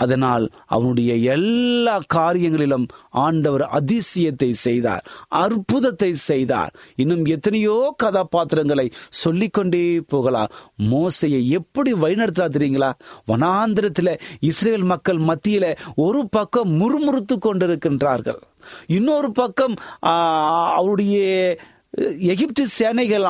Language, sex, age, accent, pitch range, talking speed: Tamil, male, 30-49, native, 145-210 Hz, 80 wpm